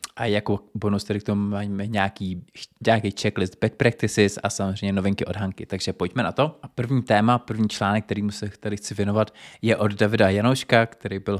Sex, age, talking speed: male, 20-39, 195 wpm